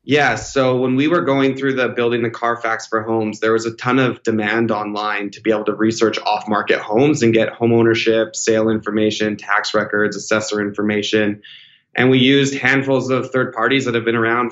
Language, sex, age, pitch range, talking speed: English, male, 20-39, 110-120 Hz, 200 wpm